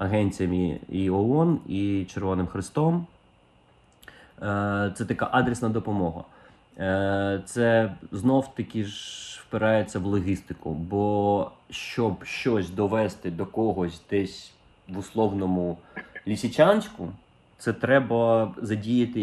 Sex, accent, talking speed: male, native, 95 wpm